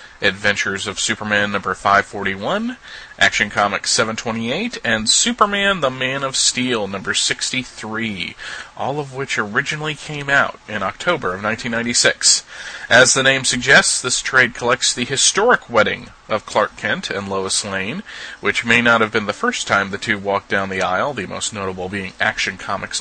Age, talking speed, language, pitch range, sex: 30-49, 160 wpm, English, 105-140 Hz, male